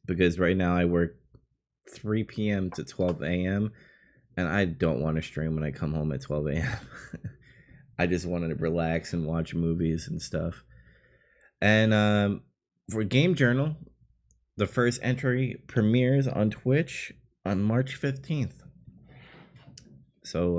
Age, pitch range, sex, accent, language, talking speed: 20-39, 85-110 Hz, male, American, English, 140 wpm